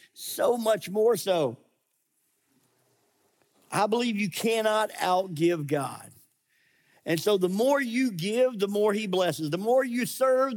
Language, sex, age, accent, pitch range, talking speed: English, male, 50-69, American, 145-220 Hz, 135 wpm